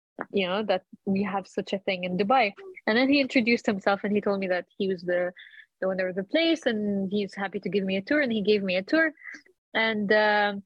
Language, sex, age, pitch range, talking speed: English, female, 20-39, 205-250 Hz, 240 wpm